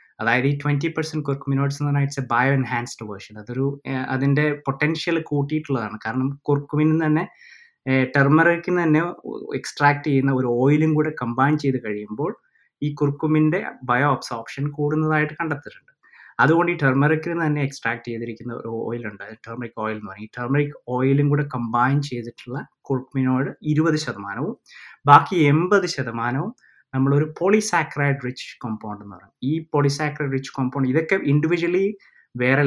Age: 20-39